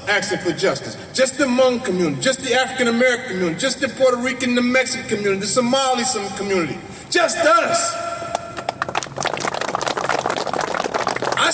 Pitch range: 235-340 Hz